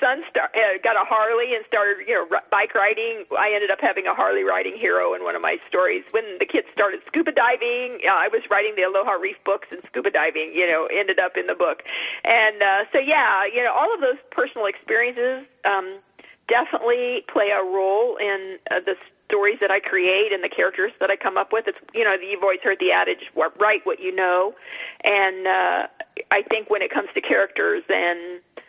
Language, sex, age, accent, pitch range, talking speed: English, female, 40-59, American, 190-310 Hz, 220 wpm